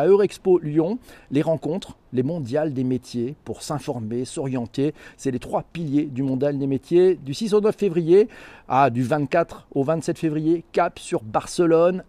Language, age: French, 50-69